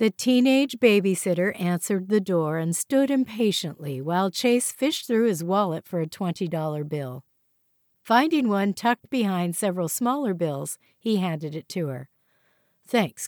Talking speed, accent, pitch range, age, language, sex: 145 wpm, American, 165-235 Hz, 50-69, English, female